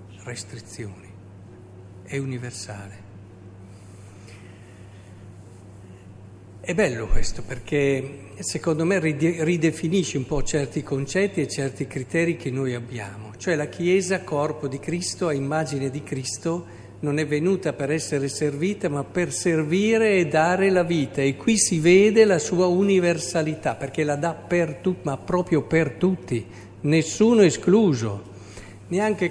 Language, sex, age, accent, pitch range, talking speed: Italian, male, 50-69, native, 100-165 Hz, 125 wpm